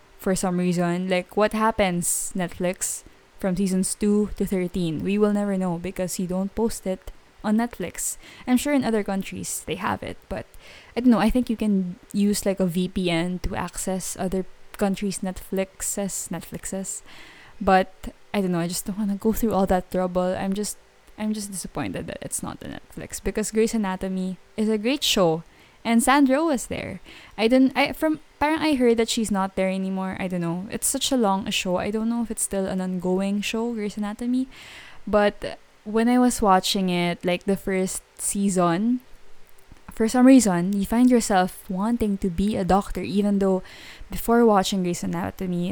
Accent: Filipino